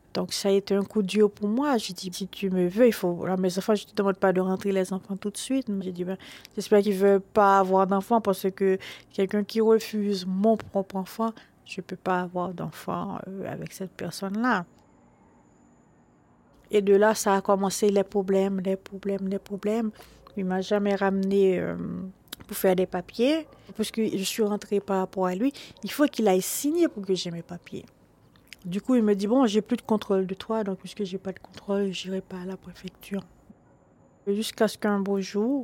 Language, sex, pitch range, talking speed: French, female, 190-225 Hz, 215 wpm